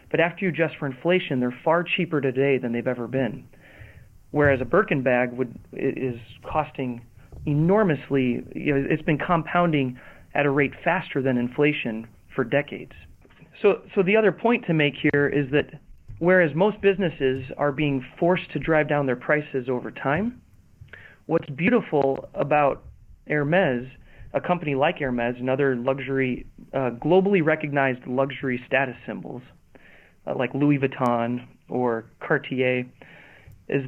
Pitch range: 125-160 Hz